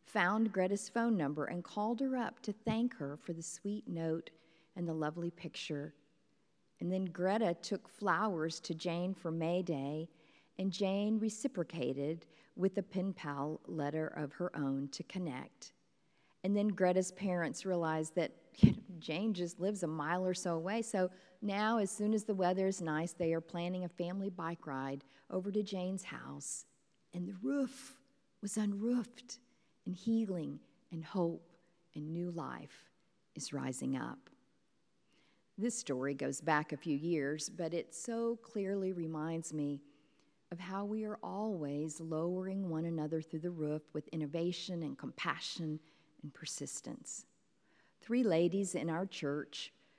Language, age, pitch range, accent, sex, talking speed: English, 50-69, 155-200 Hz, American, female, 150 wpm